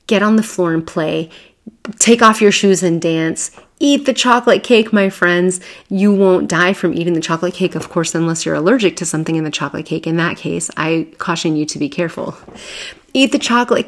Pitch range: 170-205 Hz